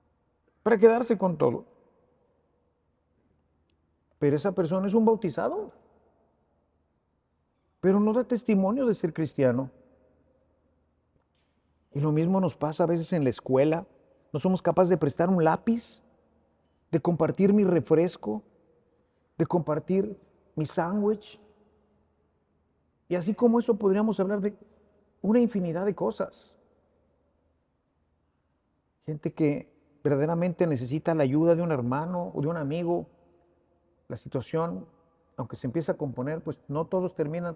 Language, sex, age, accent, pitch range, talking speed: English, male, 50-69, Mexican, 110-175 Hz, 125 wpm